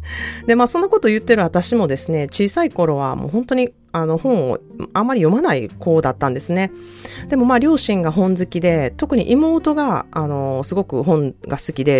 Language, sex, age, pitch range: Japanese, female, 30-49, 130-200 Hz